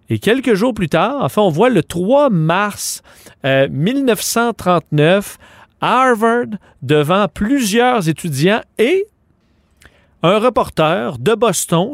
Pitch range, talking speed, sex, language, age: 145-220 Hz, 110 wpm, male, French, 40-59